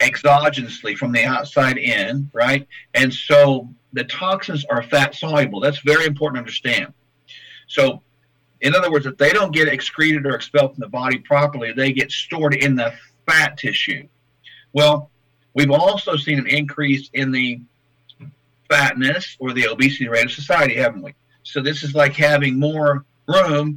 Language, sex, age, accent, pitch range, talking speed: English, male, 50-69, American, 130-145 Hz, 160 wpm